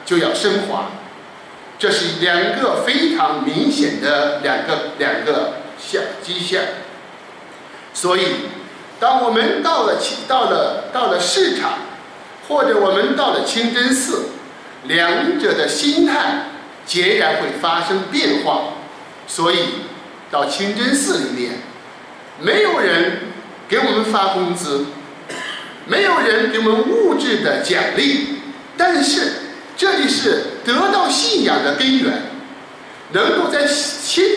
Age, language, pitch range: 50-69, Chinese, 205-335 Hz